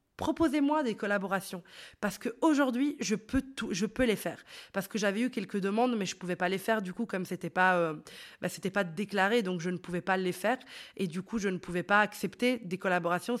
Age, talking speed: 20-39, 225 wpm